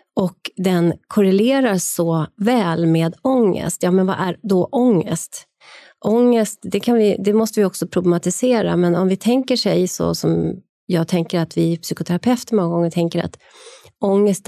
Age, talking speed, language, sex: 30-49, 155 wpm, Swedish, female